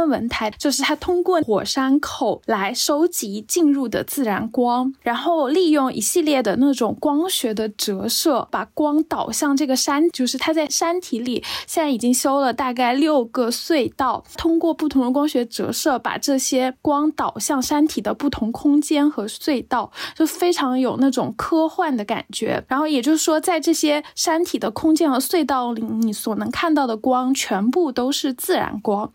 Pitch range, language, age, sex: 245-310 Hz, Chinese, 10-29, female